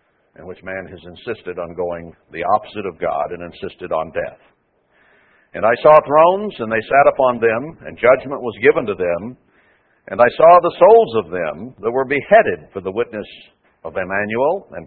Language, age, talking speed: English, 60-79, 185 wpm